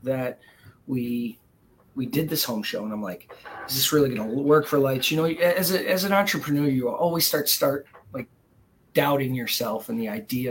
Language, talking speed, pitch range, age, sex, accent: English, 195 wpm, 135-165 Hz, 30-49, male, American